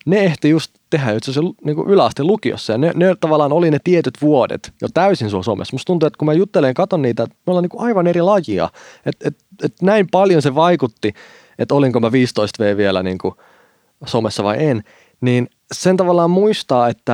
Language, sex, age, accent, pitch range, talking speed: Finnish, male, 30-49, native, 110-155 Hz, 200 wpm